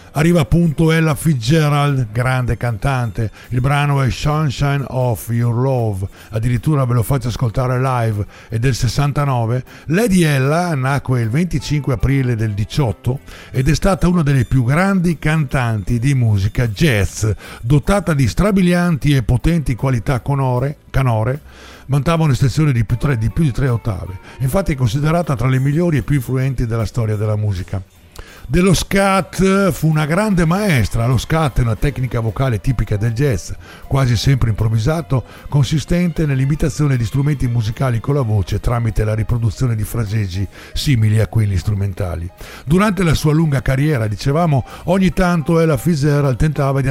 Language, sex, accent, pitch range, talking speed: Italian, male, native, 115-155 Hz, 145 wpm